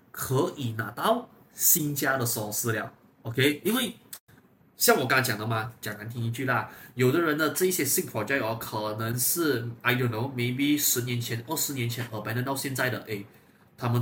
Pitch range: 115-165 Hz